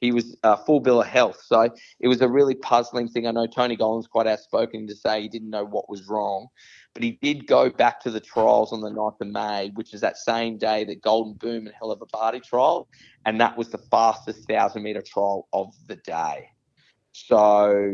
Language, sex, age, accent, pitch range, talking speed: English, male, 20-39, Australian, 110-125 Hz, 220 wpm